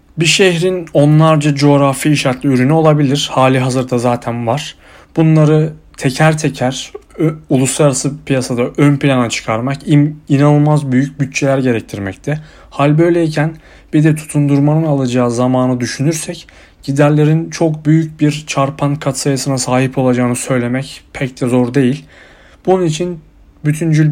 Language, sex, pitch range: Turkish, male, 130-155 Hz